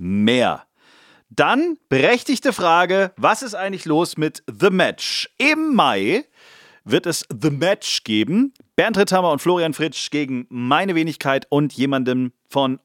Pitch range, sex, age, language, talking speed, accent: 125-165 Hz, male, 40-59, German, 135 wpm, German